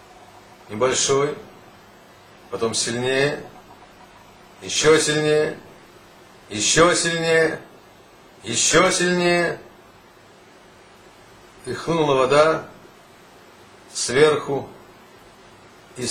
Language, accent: Russian, native